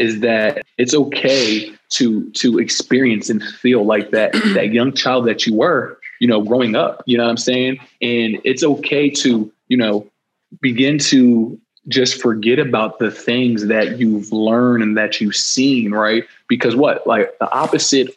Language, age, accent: English, 20-39, American